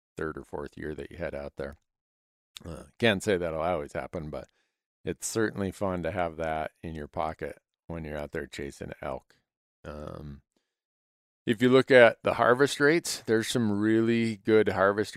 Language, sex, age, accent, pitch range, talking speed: English, male, 50-69, American, 75-95 Hz, 175 wpm